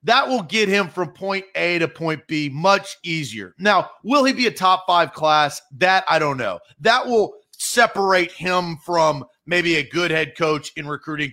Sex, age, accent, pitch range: male, 40-59, American, 150-200 Hz